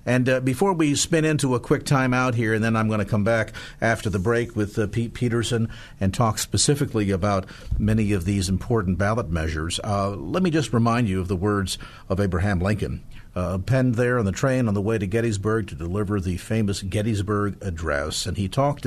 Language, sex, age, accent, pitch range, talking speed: English, male, 50-69, American, 100-125 Hz, 210 wpm